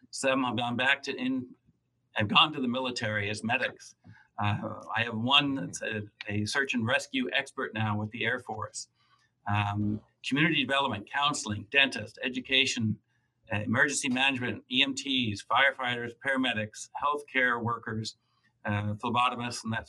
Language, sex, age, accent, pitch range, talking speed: English, male, 60-79, American, 110-135 Hz, 140 wpm